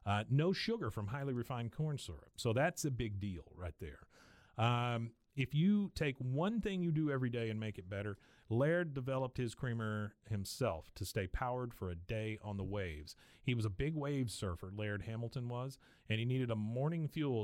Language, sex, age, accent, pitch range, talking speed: English, male, 40-59, American, 105-130 Hz, 200 wpm